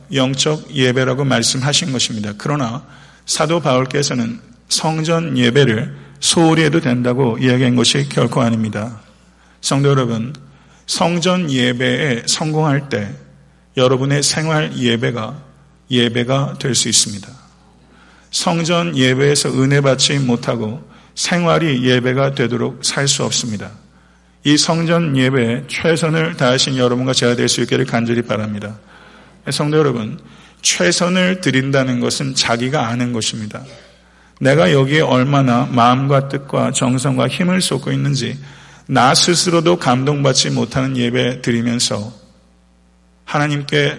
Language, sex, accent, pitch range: Korean, male, native, 115-145 Hz